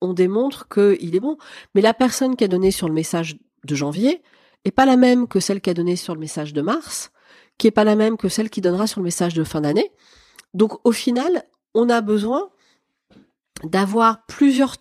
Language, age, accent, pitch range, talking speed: French, 40-59, French, 180-240 Hz, 215 wpm